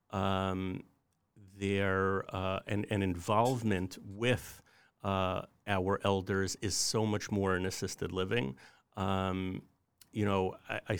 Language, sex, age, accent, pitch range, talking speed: English, male, 50-69, American, 95-110 Hz, 115 wpm